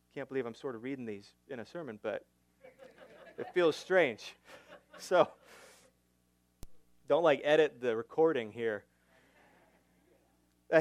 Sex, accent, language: male, American, English